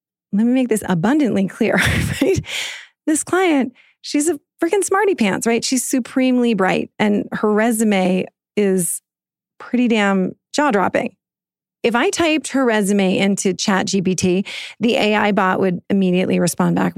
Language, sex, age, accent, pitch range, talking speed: English, female, 30-49, American, 185-245 Hz, 140 wpm